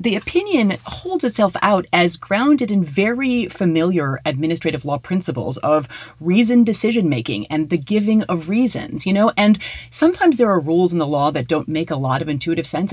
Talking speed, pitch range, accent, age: 180 wpm, 150-215 Hz, American, 30-49